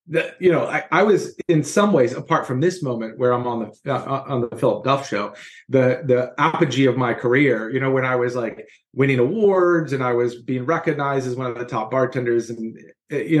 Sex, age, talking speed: male, 30-49, 225 wpm